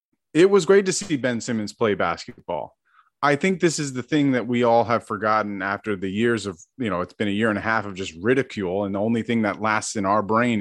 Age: 30-49